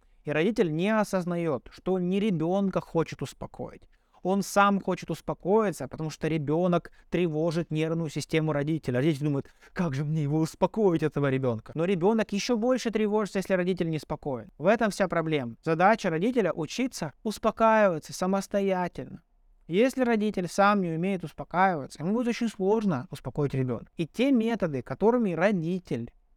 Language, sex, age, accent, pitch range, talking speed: Russian, male, 20-39, native, 160-220 Hz, 150 wpm